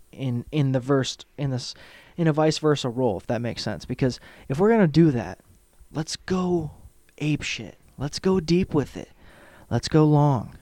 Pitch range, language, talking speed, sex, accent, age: 120-150 Hz, English, 185 wpm, male, American, 30-49